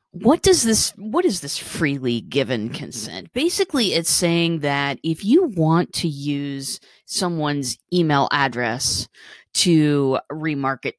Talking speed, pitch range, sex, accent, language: 125 wpm, 130-190 Hz, female, American, English